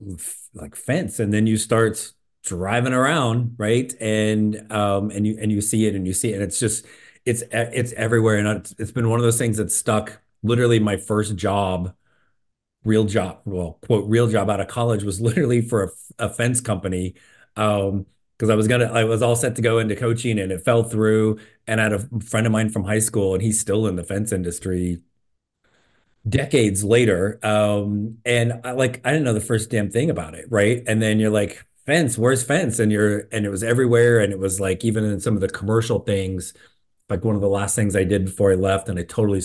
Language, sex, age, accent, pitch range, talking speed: English, male, 30-49, American, 100-115 Hz, 220 wpm